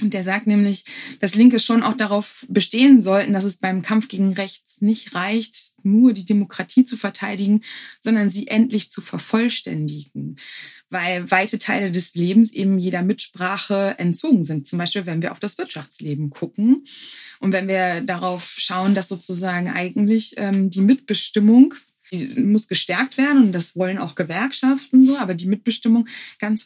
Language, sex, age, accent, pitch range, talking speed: German, female, 20-39, German, 190-235 Hz, 160 wpm